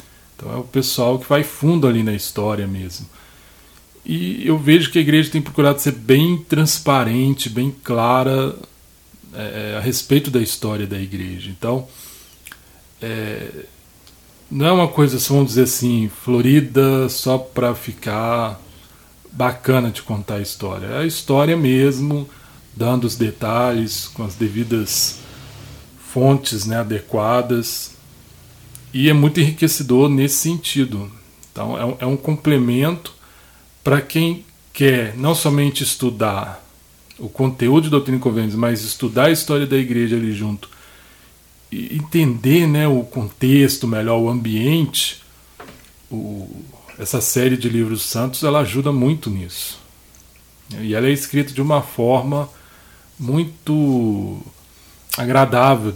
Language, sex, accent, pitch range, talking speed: Portuguese, male, Brazilian, 110-140 Hz, 130 wpm